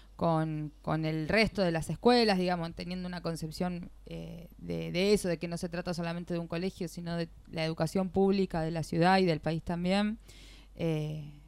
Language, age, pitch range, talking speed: Spanish, 20-39, 160-185 Hz, 190 wpm